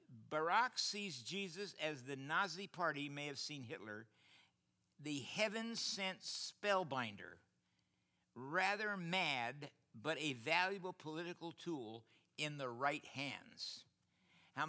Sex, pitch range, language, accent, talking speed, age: male, 125-170 Hz, English, American, 105 wpm, 60-79